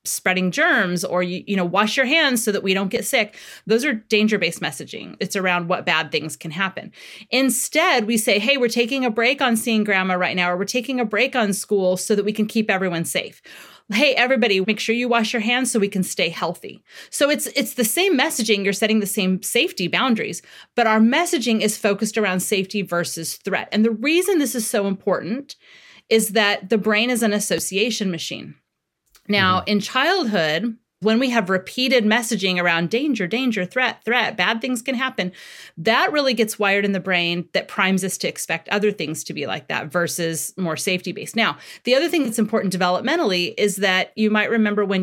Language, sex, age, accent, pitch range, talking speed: English, female, 30-49, American, 185-235 Hz, 205 wpm